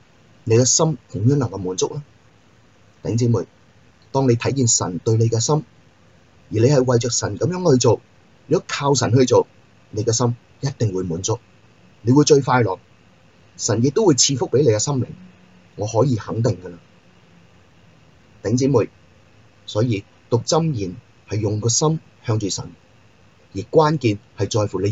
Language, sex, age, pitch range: Chinese, male, 30-49, 105-130 Hz